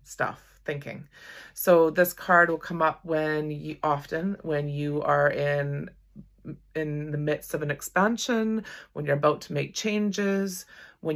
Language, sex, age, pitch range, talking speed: English, female, 30-49, 150-190 Hz, 150 wpm